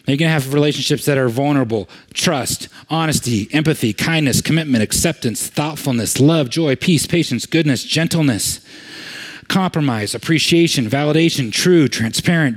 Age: 40-59